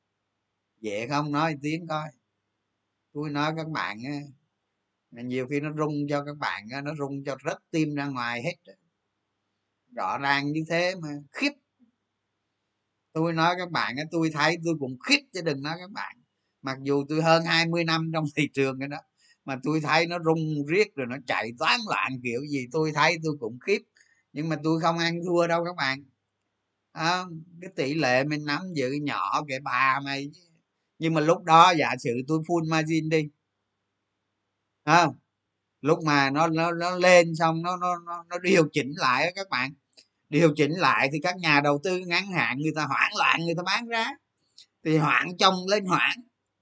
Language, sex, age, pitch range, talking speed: Vietnamese, male, 20-39, 130-175 Hz, 185 wpm